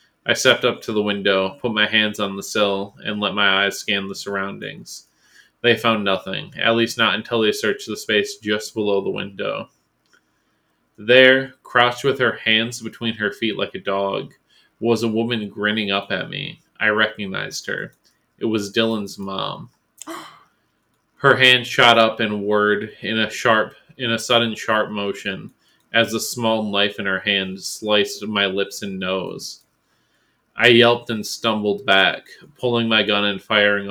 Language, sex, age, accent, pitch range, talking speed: English, male, 20-39, American, 100-115 Hz, 170 wpm